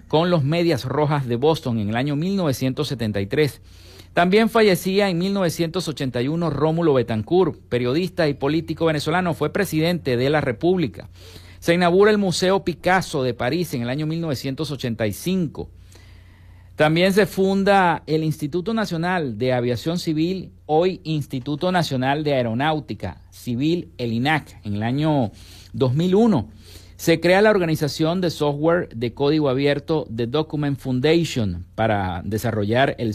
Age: 50-69